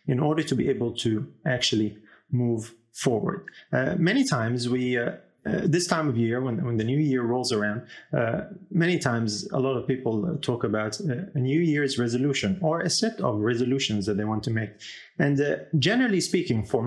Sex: male